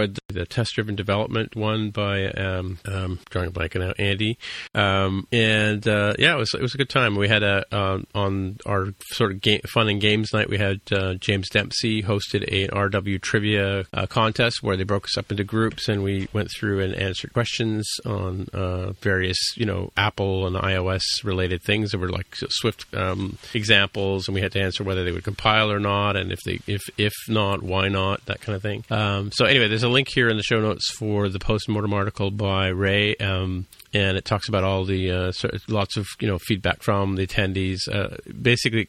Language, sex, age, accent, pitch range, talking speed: English, male, 40-59, American, 95-110 Hz, 210 wpm